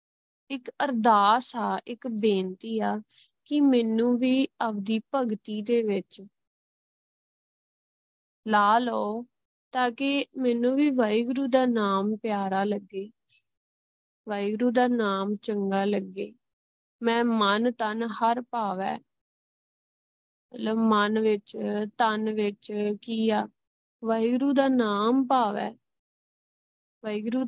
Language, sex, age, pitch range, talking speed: Punjabi, female, 20-39, 210-255 Hz, 90 wpm